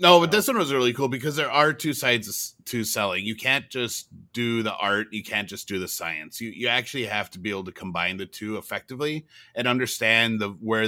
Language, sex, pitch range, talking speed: English, male, 100-120 Hz, 230 wpm